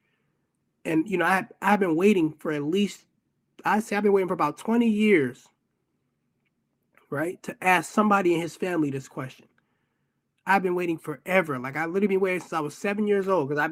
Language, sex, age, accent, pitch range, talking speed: English, male, 20-39, American, 145-195 Hz, 195 wpm